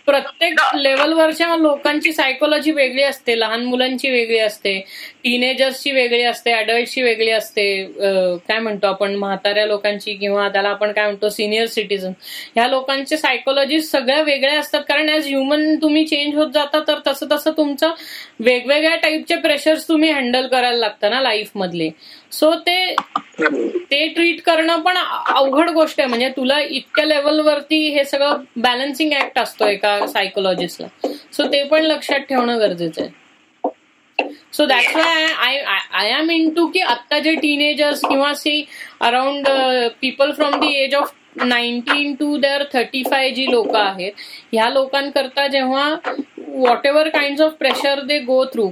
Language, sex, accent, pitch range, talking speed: Marathi, female, native, 240-300 Hz, 150 wpm